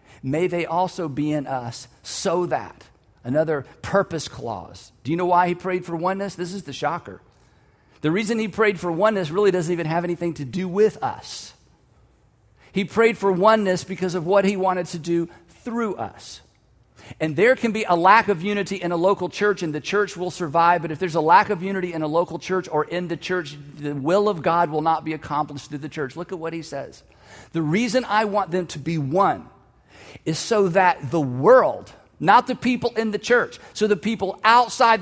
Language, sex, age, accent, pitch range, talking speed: English, male, 50-69, American, 165-220 Hz, 210 wpm